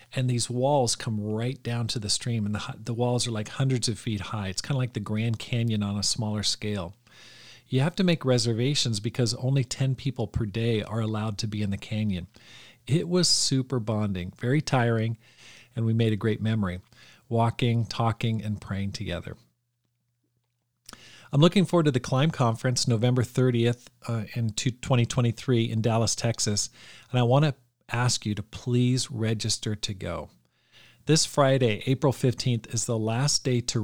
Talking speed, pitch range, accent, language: 175 wpm, 110-125 Hz, American, English